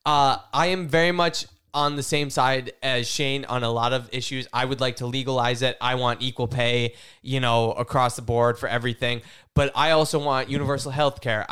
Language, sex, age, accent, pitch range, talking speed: English, male, 10-29, American, 120-150 Hz, 210 wpm